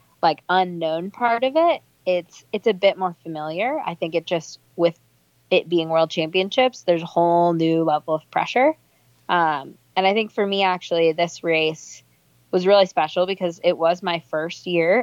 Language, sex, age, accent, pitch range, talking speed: English, female, 20-39, American, 155-185 Hz, 180 wpm